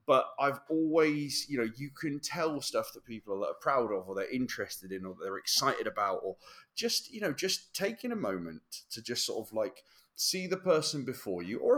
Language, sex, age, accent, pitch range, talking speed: English, male, 30-49, British, 110-160 Hz, 215 wpm